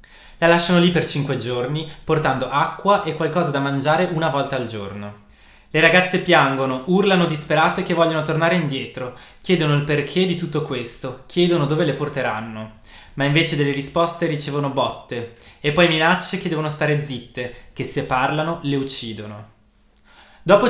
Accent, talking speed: native, 155 wpm